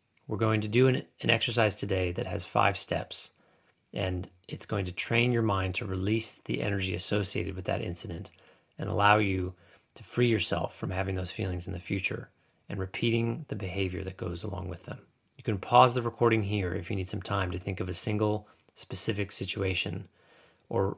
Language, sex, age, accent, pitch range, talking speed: English, male, 30-49, American, 95-115 Hz, 195 wpm